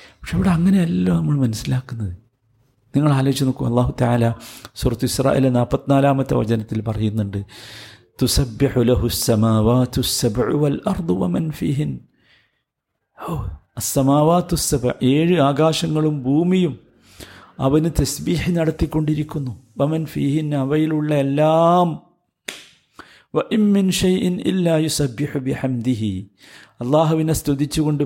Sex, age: male, 50-69